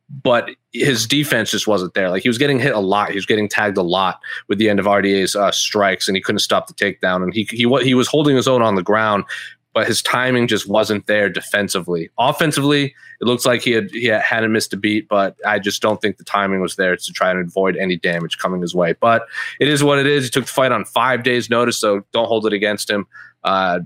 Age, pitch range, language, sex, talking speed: 30-49, 100-120 Hz, English, male, 250 wpm